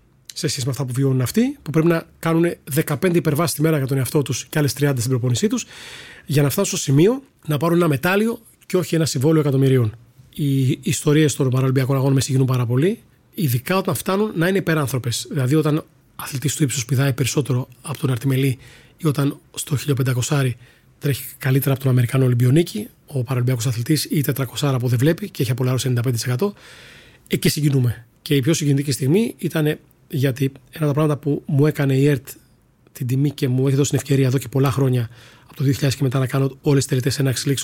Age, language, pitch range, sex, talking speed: 30-49, Greek, 130-155 Hz, male, 210 wpm